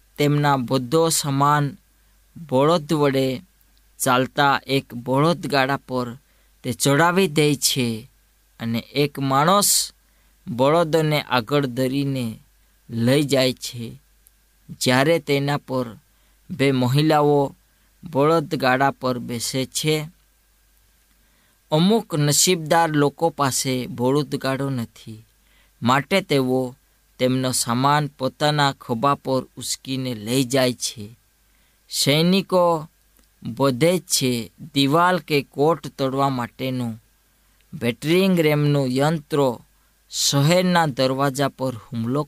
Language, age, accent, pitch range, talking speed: Gujarati, 20-39, native, 125-150 Hz, 65 wpm